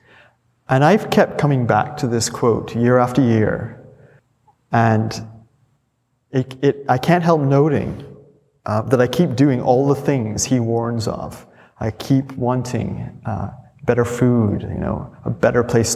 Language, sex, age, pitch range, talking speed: English, male, 30-49, 110-135 Hz, 145 wpm